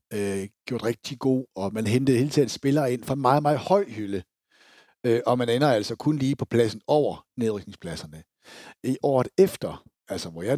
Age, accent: 60-79, native